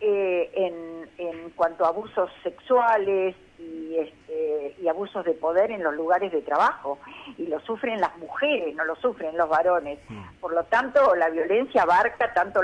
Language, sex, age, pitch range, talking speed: Spanish, female, 50-69, 175-255 Hz, 165 wpm